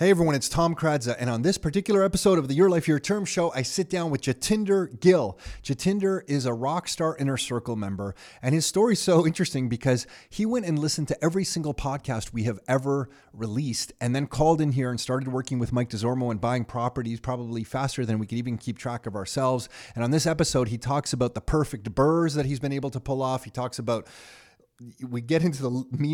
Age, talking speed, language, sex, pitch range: 30-49, 225 wpm, English, male, 115-145 Hz